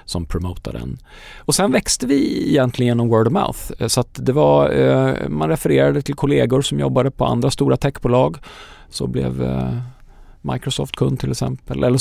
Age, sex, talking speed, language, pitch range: 40-59, male, 160 wpm, Swedish, 90-120 Hz